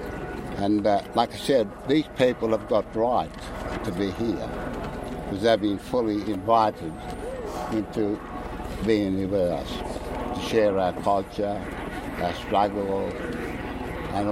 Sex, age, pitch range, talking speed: male, 60-79, 95-115 Hz, 125 wpm